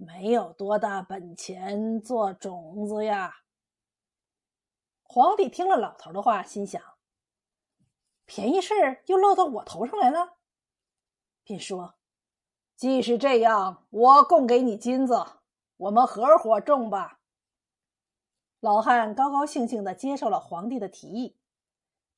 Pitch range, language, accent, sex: 210-320 Hz, Chinese, native, female